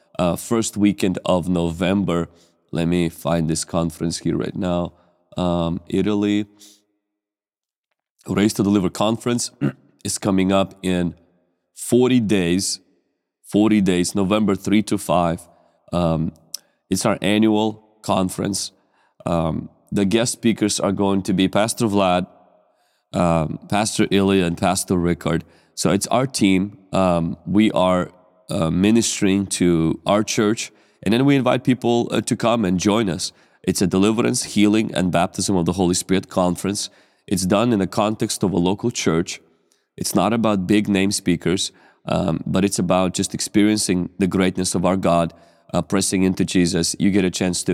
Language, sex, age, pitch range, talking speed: English, male, 30-49, 90-105 Hz, 150 wpm